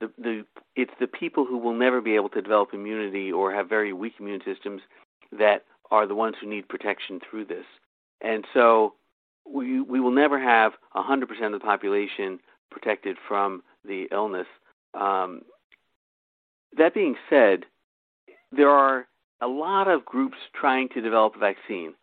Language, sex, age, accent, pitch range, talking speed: English, male, 50-69, American, 110-140 Hz, 155 wpm